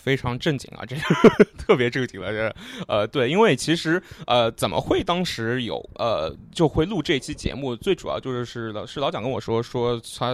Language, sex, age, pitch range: Chinese, male, 20-39, 120-150 Hz